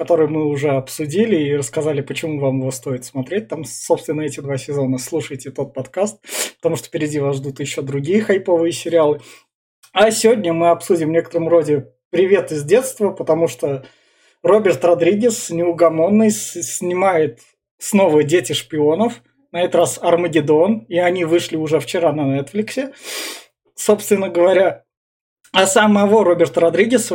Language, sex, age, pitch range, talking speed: Russian, male, 20-39, 145-175 Hz, 140 wpm